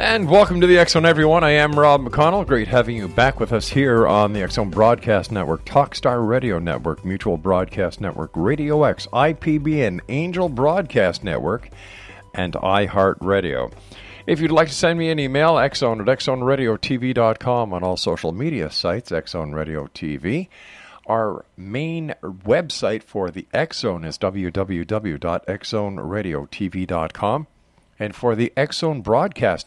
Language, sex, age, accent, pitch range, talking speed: English, male, 50-69, American, 100-135 Hz, 135 wpm